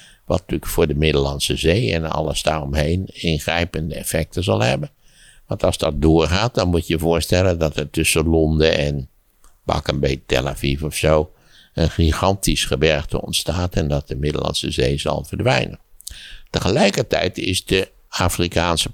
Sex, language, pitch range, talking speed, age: male, Dutch, 75-90 Hz, 150 wpm, 60-79